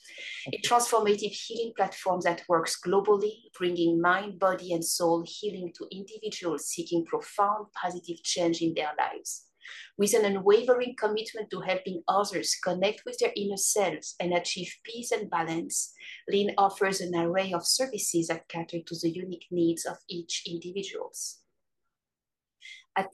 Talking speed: 145 wpm